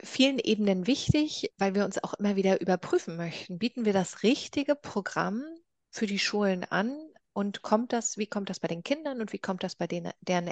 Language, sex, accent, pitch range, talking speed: German, female, German, 180-225 Hz, 205 wpm